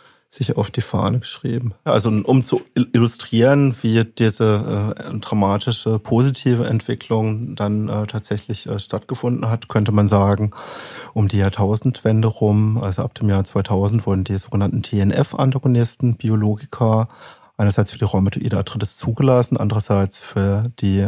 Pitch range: 105-125 Hz